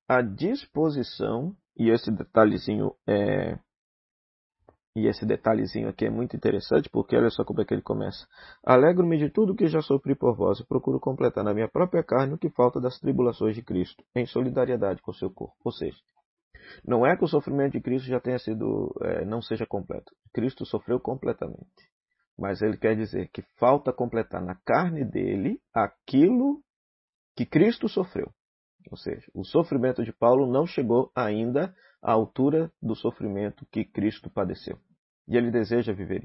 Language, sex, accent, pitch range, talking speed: Portuguese, male, Brazilian, 110-145 Hz, 170 wpm